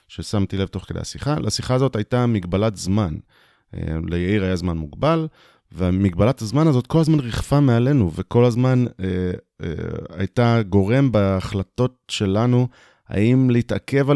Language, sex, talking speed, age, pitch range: Hebrew, male, 130 wpm, 30-49, 95-120 Hz